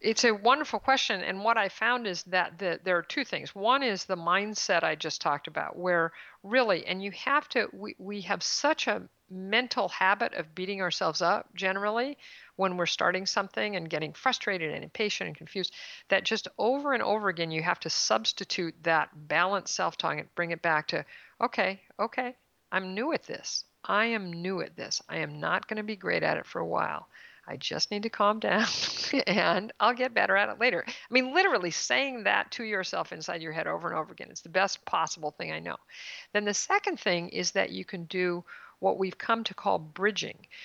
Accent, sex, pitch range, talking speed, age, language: American, female, 175-225 Hz, 210 wpm, 50-69, English